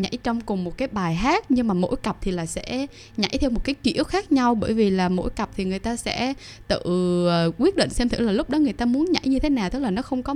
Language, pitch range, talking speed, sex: Vietnamese, 185-255 Hz, 290 wpm, female